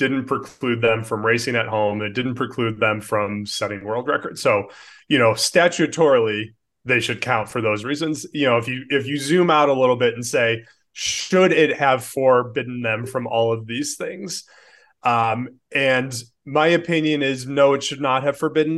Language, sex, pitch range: English, male, 115-145 Hz